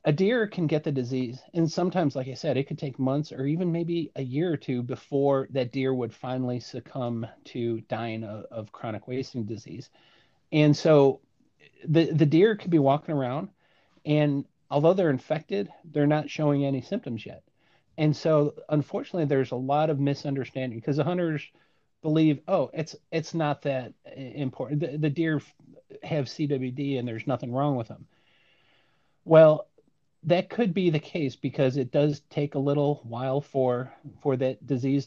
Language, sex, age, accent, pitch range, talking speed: English, male, 40-59, American, 130-155 Hz, 170 wpm